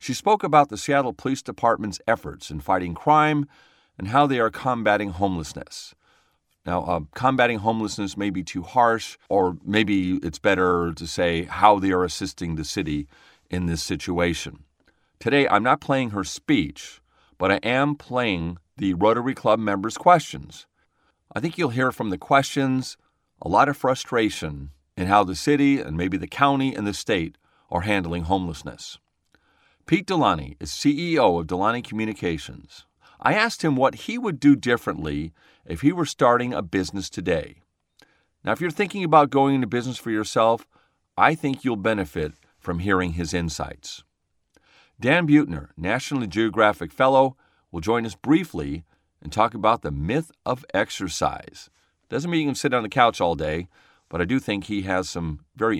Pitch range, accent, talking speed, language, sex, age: 85-135 Hz, American, 165 wpm, English, male, 40-59